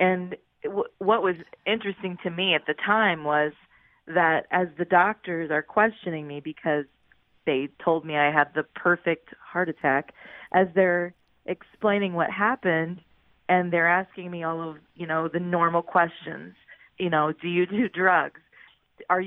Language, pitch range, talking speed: English, 160-195 Hz, 155 wpm